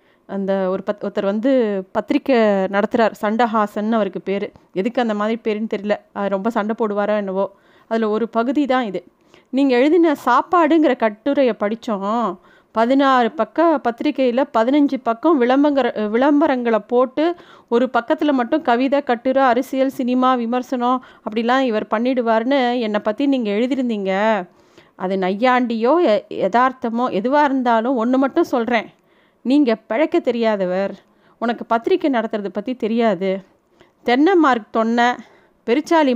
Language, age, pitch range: Tamil, 30-49, 220-280 Hz